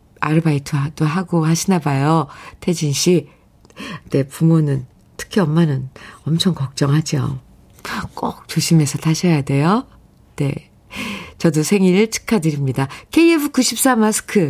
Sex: female